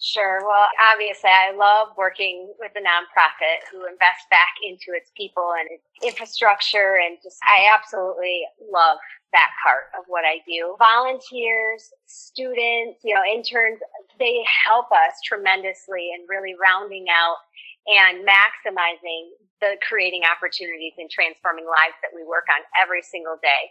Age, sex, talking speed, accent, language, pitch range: 30-49, female, 145 wpm, American, English, 180-235 Hz